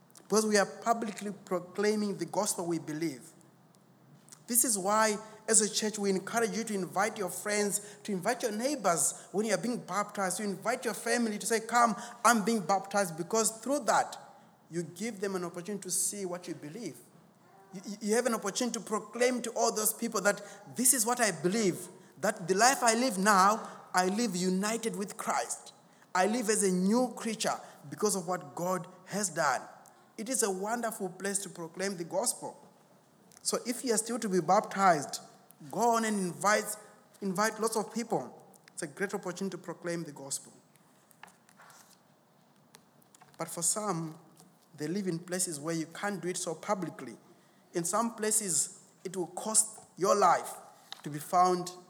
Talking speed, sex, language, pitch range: 175 wpm, male, English, 180-220 Hz